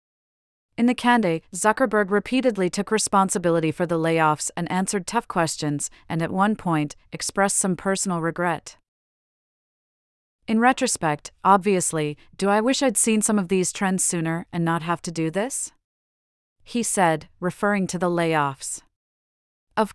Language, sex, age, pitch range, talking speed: English, female, 40-59, 165-200 Hz, 145 wpm